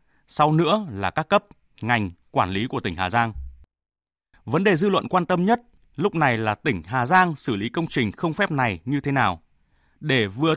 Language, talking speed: Vietnamese, 210 wpm